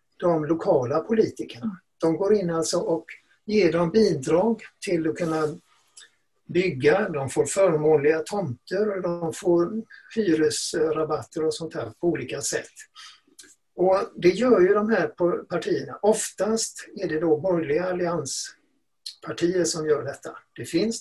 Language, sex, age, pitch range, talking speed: Swedish, male, 60-79, 155-220 Hz, 135 wpm